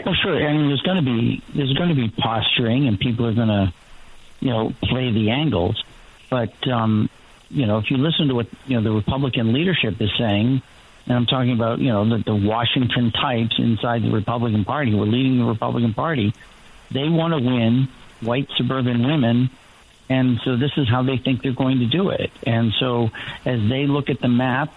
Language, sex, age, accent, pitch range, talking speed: English, male, 60-79, American, 115-130 Hz, 200 wpm